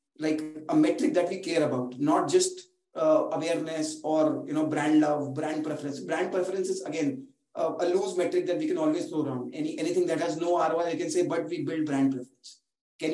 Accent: Indian